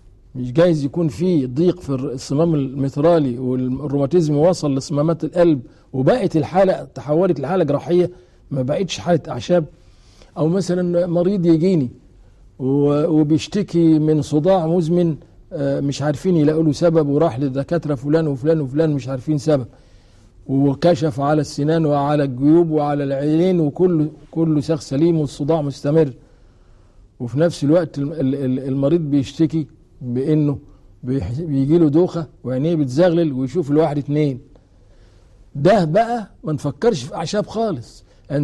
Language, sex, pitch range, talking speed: Arabic, male, 135-170 Hz, 115 wpm